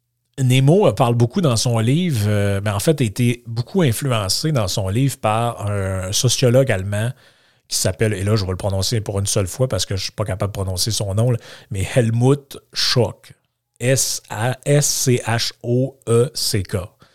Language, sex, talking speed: French, male, 165 wpm